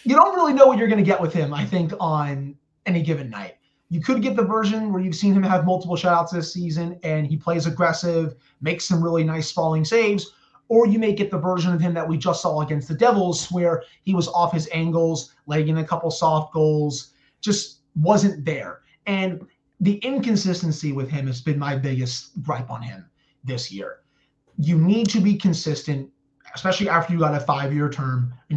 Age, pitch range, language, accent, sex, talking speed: 30-49, 145-185 Hz, English, American, male, 205 wpm